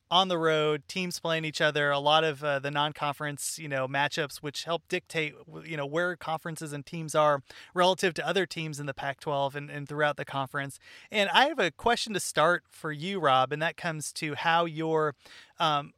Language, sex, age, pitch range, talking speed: English, male, 30-49, 145-180 Hz, 205 wpm